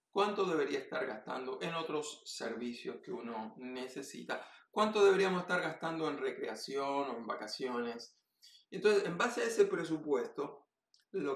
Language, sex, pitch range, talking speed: Polish, male, 135-195 Hz, 135 wpm